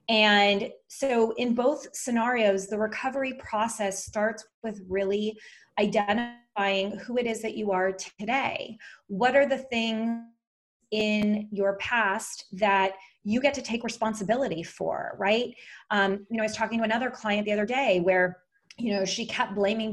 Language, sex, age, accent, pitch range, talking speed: English, female, 30-49, American, 205-265 Hz, 155 wpm